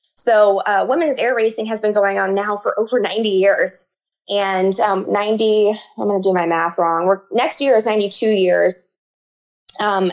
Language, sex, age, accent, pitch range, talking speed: English, female, 20-39, American, 190-230 Hz, 185 wpm